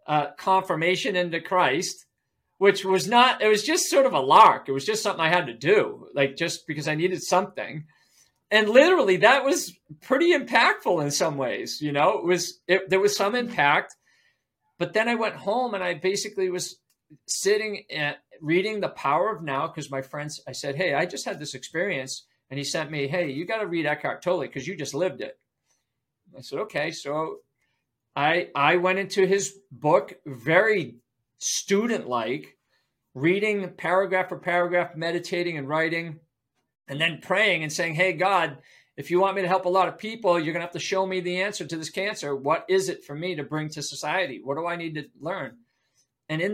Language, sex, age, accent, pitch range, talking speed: English, male, 40-59, American, 145-190 Hz, 200 wpm